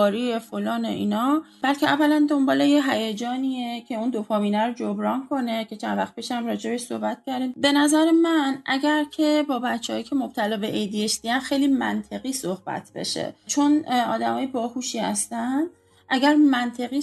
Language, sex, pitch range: Persian, female, 220-275 Hz